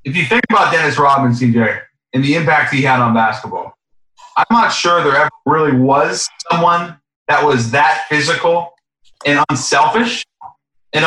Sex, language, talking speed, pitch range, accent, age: male, English, 155 wpm, 120-155 Hz, American, 30-49